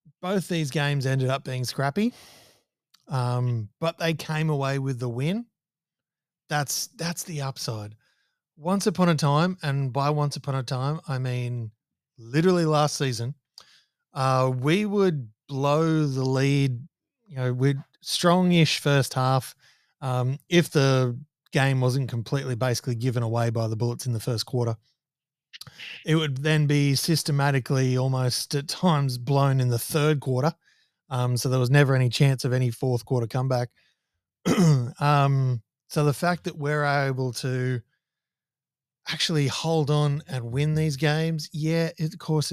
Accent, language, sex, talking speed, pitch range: Australian, English, male, 150 wpm, 130-155 Hz